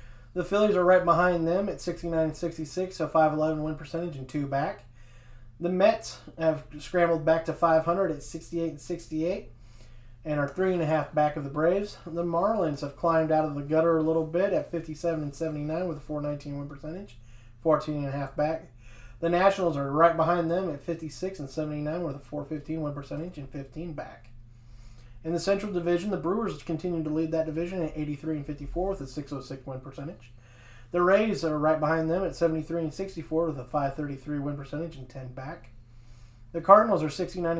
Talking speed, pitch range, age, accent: 180 wpm, 140-170 Hz, 30-49, American